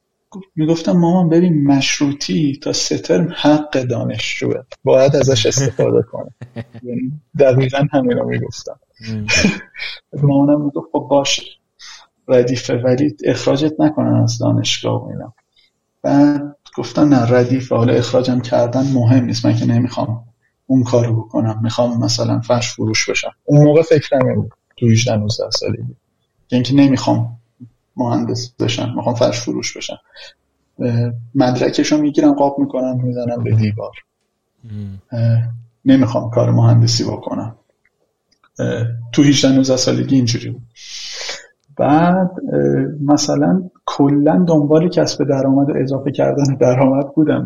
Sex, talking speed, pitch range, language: male, 115 wpm, 120-145 Hz, Persian